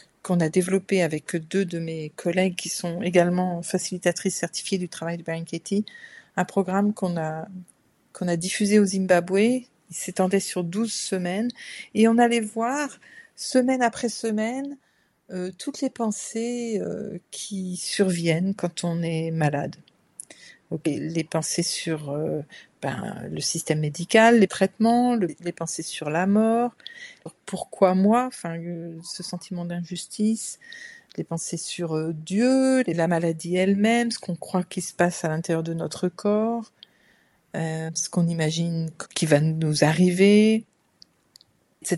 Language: French